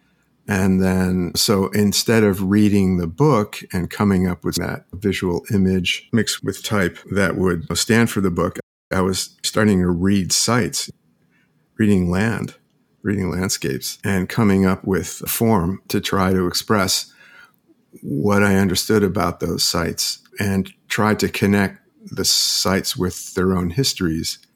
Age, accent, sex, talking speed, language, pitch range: 50-69, American, male, 145 wpm, English, 90-110 Hz